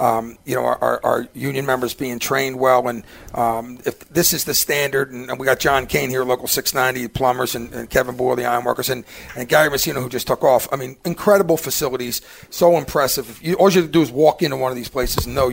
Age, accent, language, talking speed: 40-59, American, English, 240 wpm